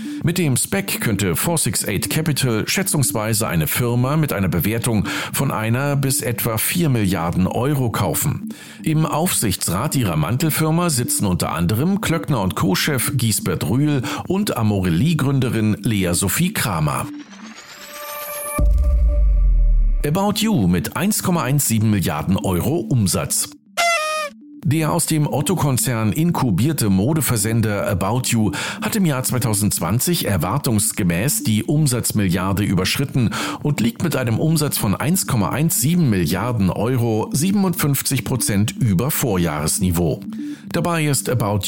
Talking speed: 110 wpm